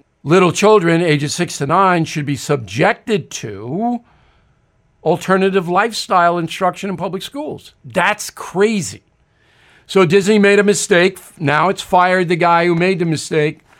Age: 60-79